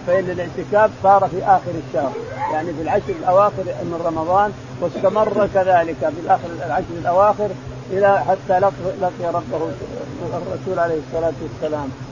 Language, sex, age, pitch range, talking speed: Arabic, male, 50-69, 165-200 Hz, 130 wpm